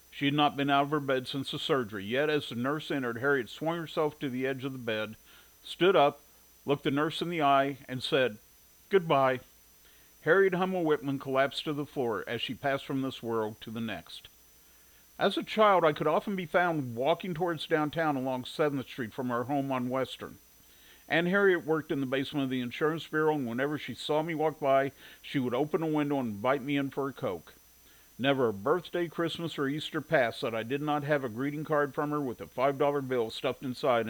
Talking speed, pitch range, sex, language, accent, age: 215 wpm, 125-150 Hz, male, English, American, 50-69